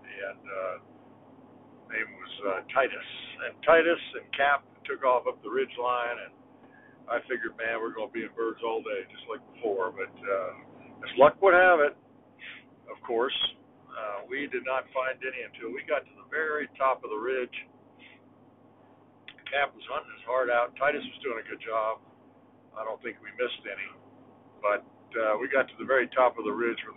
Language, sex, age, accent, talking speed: English, male, 60-79, American, 190 wpm